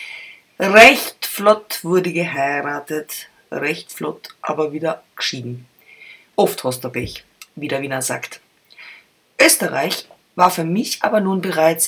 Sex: female